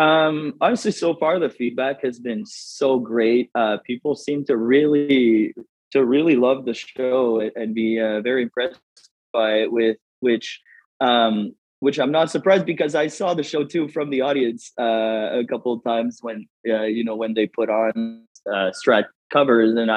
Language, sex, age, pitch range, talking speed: English, male, 20-39, 115-140 Hz, 180 wpm